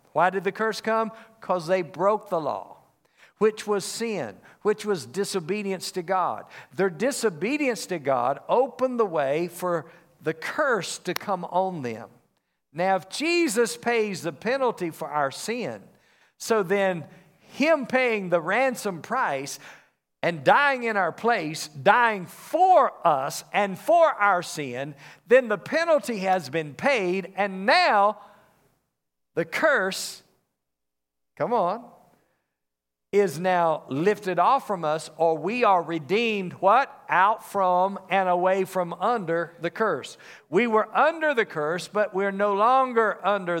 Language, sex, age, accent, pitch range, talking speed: English, male, 50-69, American, 170-215 Hz, 140 wpm